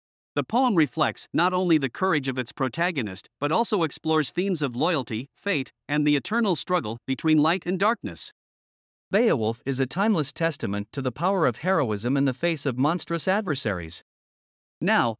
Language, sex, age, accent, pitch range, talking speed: English, male, 50-69, American, 130-175 Hz, 165 wpm